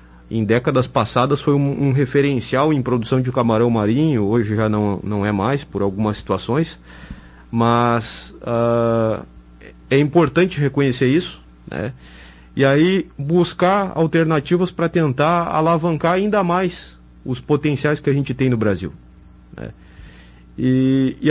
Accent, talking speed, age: Brazilian, 130 wpm, 30-49